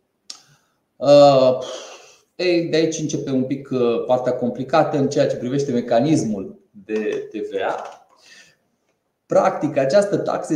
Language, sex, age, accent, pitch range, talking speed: Romanian, male, 20-39, native, 120-170 Hz, 100 wpm